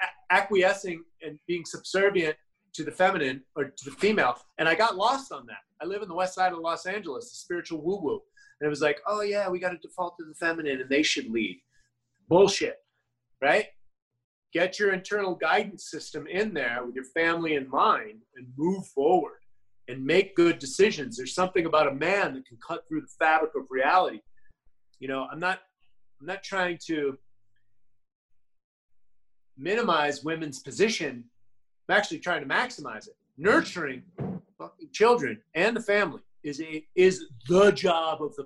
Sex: male